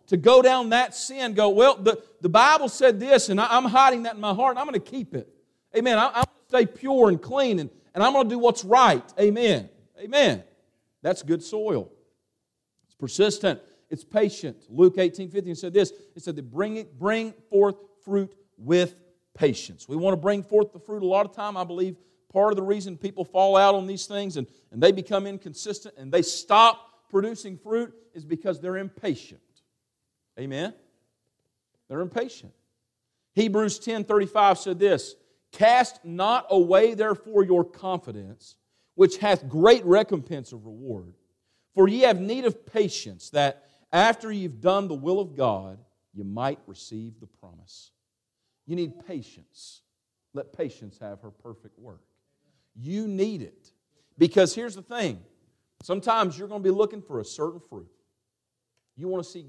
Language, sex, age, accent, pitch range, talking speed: English, male, 50-69, American, 150-215 Hz, 170 wpm